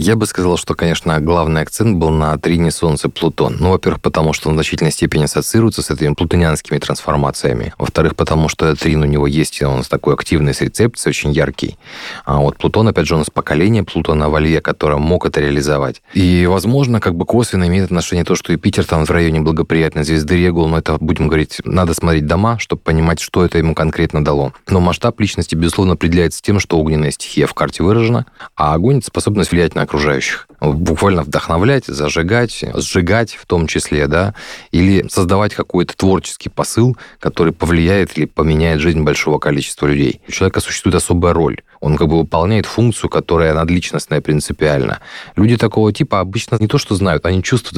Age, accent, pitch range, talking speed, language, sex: 30-49, native, 80-95 Hz, 180 wpm, Russian, male